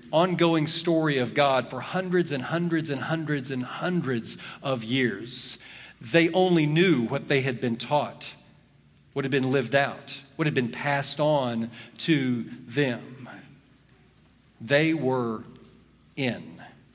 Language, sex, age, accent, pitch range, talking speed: English, male, 50-69, American, 125-160 Hz, 130 wpm